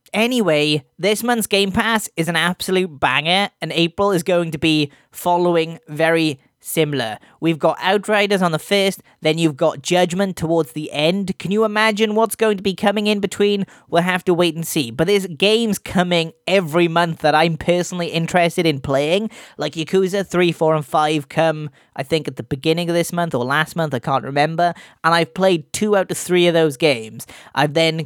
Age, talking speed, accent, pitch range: 20-39, 195 wpm, British, 150-190 Hz